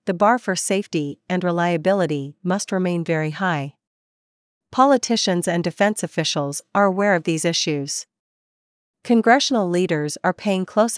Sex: female